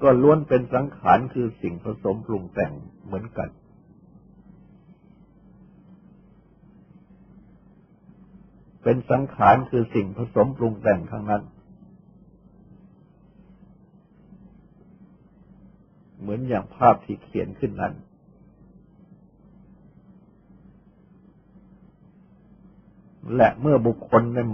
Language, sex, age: Thai, male, 60-79